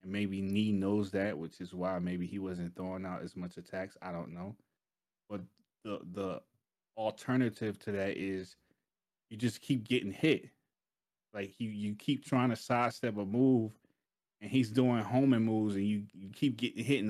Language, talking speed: English, 185 wpm